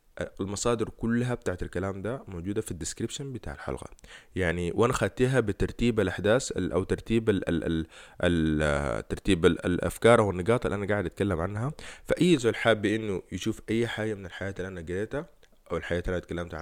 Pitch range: 90-125 Hz